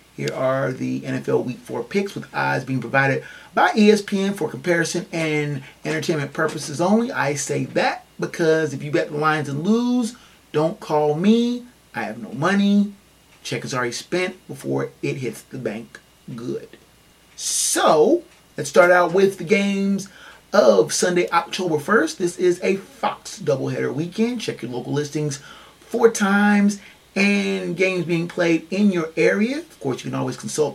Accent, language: American, English